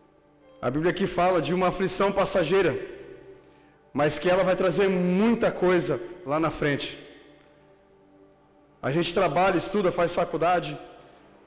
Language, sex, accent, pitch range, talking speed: Portuguese, male, Brazilian, 175-205 Hz, 125 wpm